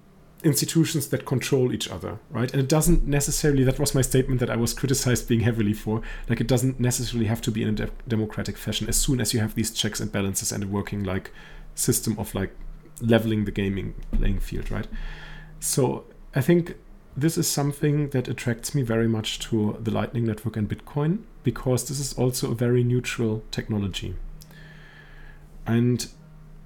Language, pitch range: English, 115-155 Hz